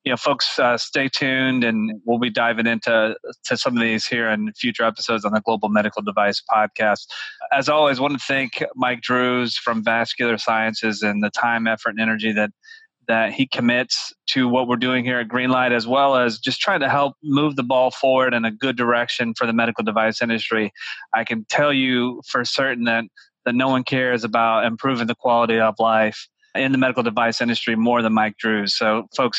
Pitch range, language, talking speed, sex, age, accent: 115-130 Hz, English, 205 wpm, male, 30-49, American